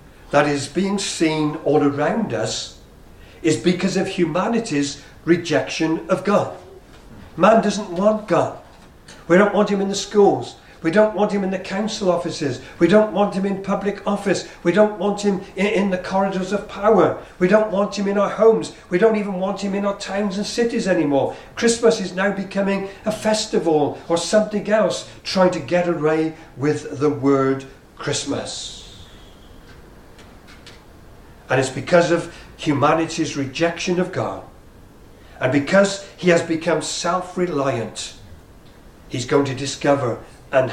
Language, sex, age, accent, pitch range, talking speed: English, male, 50-69, British, 140-200 Hz, 150 wpm